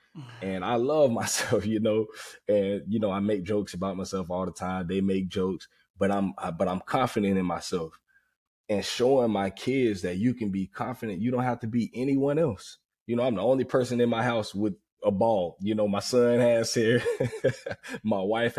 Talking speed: 205 wpm